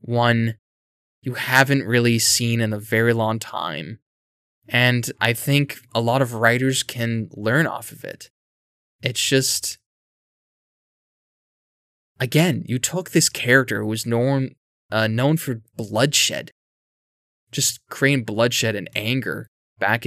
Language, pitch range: English, 110-130 Hz